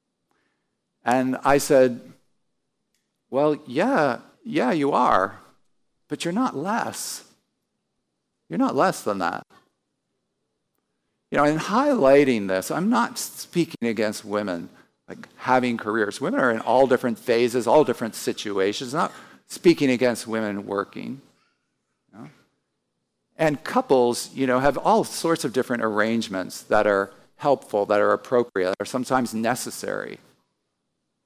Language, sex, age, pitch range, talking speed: English, male, 50-69, 115-160 Hz, 125 wpm